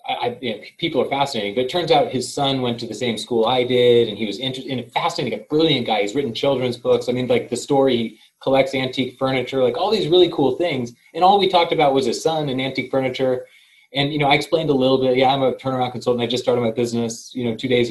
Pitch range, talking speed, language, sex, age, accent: 110-135 Hz, 260 wpm, English, male, 30-49, American